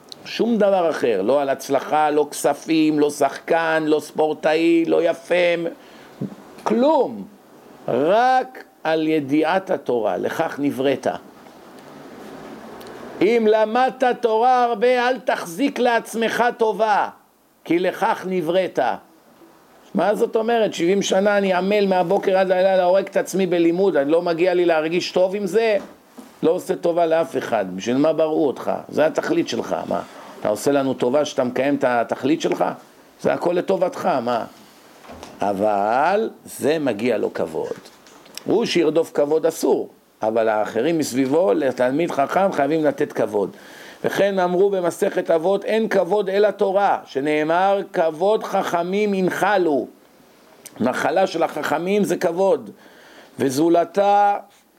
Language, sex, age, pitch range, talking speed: Hebrew, male, 50-69, 155-205 Hz, 125 wpm